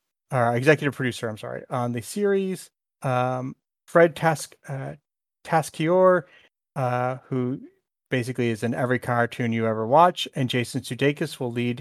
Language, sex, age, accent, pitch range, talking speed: English, male, 30-49, American, 120-150 Hz, 140 wpm